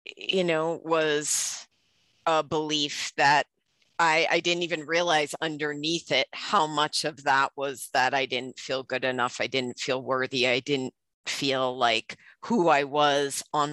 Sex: female